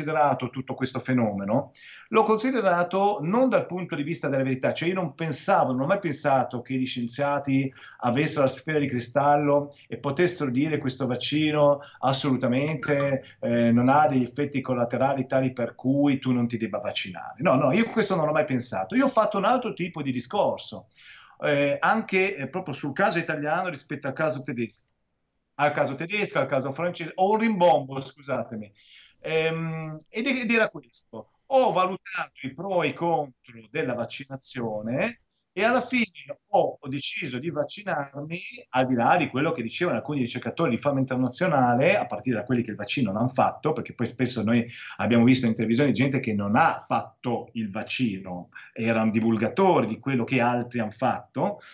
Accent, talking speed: native, 175 wpm